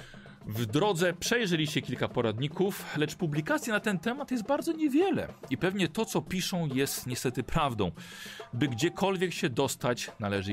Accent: native